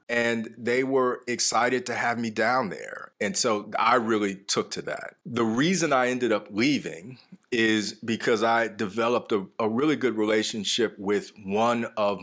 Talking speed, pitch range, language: 165 wpm, 100-120 Hz, English